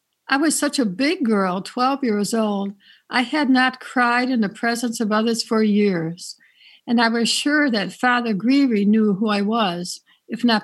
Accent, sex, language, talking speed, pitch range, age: American, female, English, 185 wpm, 215-255 Hz, 60-79